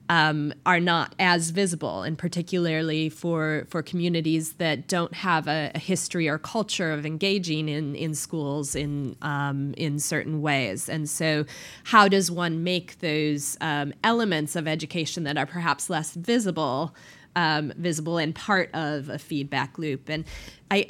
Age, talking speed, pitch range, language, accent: 20-39, 155 wpm, 155-185 Hz, English, American